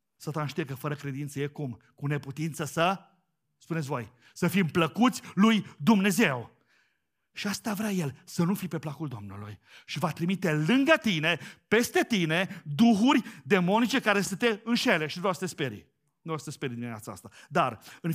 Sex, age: male, 40-59